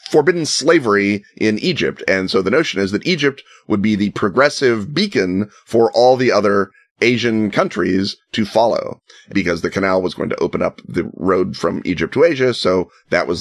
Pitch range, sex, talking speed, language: 95-120 Hz, male, 185 wpm, English